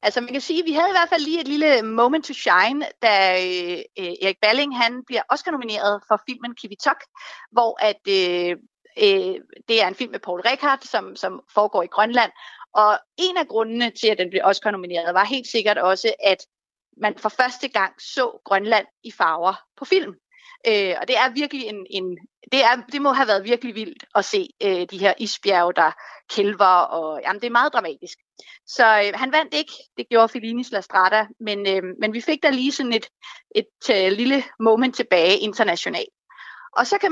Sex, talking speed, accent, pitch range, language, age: female, 205 wpm, native, 205-295 Hz, Danish, 30-49